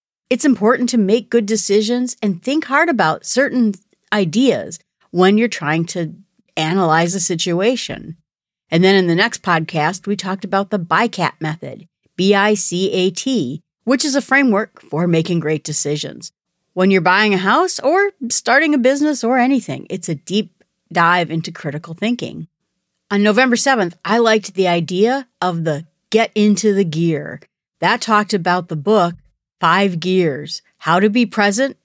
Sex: female